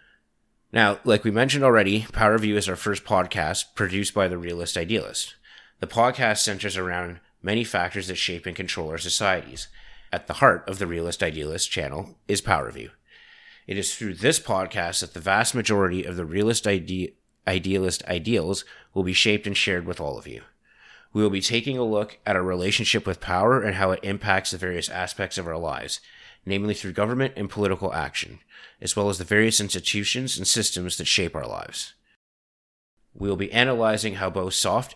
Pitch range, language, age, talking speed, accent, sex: 90-105 Hz, English, 30-49, 185 wpm, American, male